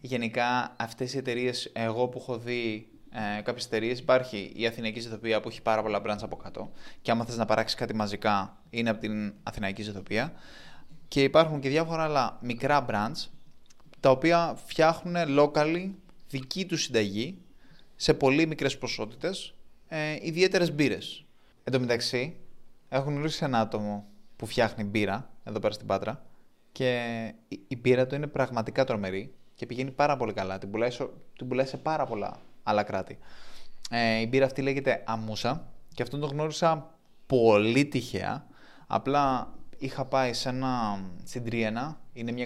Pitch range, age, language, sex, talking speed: 115-145 Hz, 20-39, Greek, male, 155 wpm